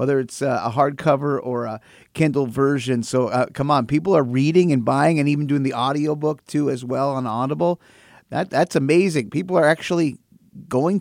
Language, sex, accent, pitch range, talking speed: English, male, American, 125-155 Hz, 185 wpm